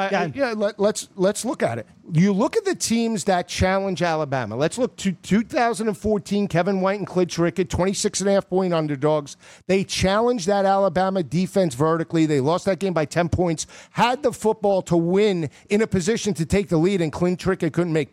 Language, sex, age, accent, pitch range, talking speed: English, male, 50-69, American, 170-210 Hz, 185 wpm